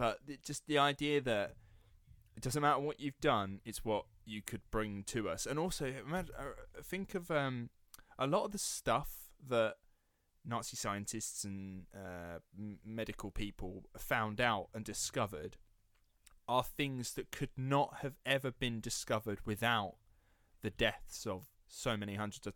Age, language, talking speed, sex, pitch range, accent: 20-39, English, 150 wpm, male, 105-130 Hz, British